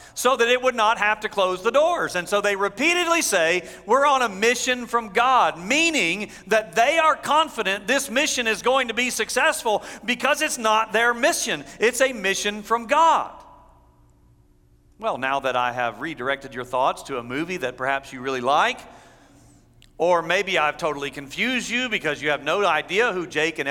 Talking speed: 185 wpm